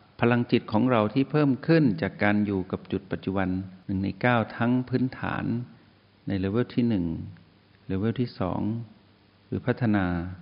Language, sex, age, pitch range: Thai, male, 60-79, 95-120 Hz